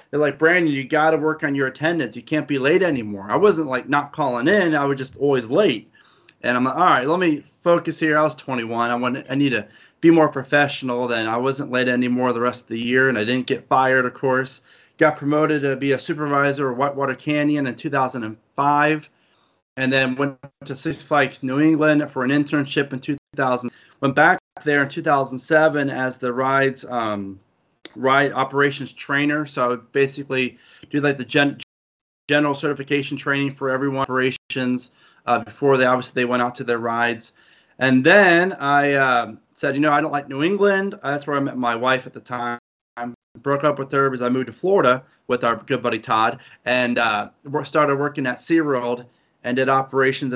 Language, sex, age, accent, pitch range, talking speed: English, male, 30-49, American, 125-145 Hz, 200 wpm